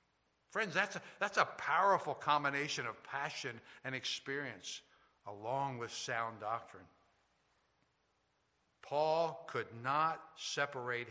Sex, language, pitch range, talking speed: male, English, 120-150 Hz, 95 wpm